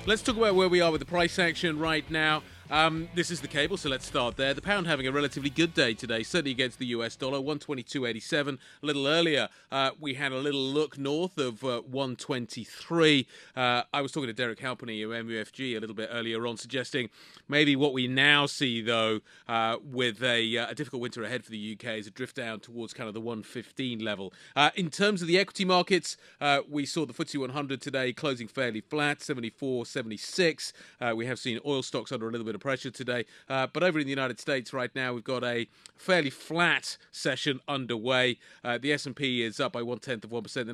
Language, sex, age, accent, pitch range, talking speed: English, male, 30-49, British, 120-145 Hz, 220 wpm